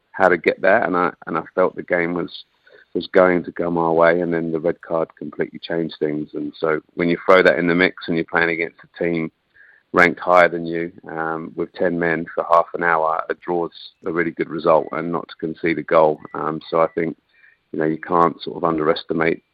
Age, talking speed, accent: 30-49, 235 wpm, British